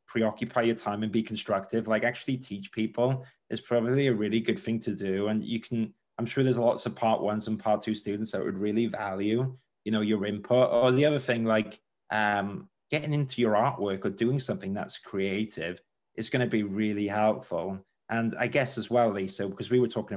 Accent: British